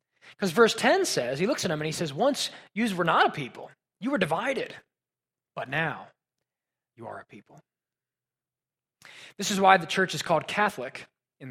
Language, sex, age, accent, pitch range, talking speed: English, male, 20-39, American, 135-190 Hz, 185 wpm